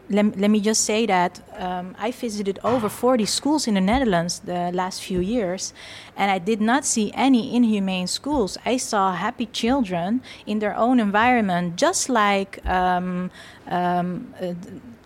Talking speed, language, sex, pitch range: 155 wpm, Dutch, female, 205-255 Hz